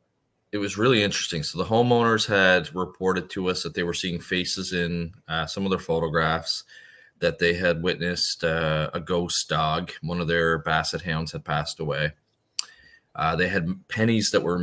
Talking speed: 180 wpm